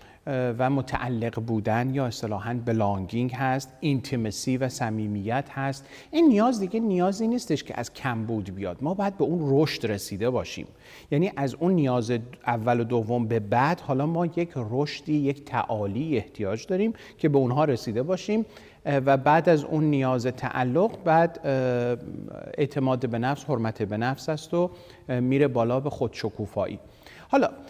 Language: Persian